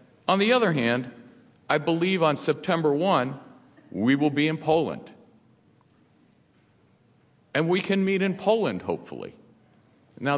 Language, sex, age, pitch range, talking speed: English, male, 50-69, 100-155 Hz, 125 wpm